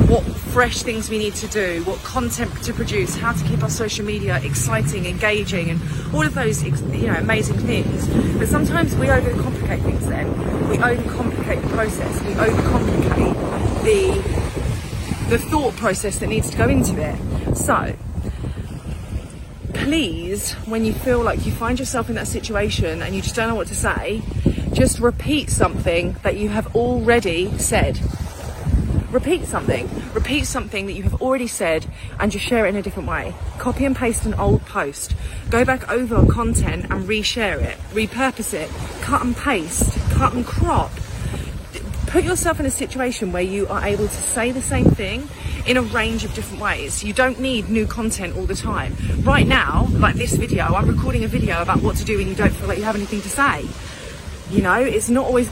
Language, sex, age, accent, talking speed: English, female, 30-49, British, 185 wpm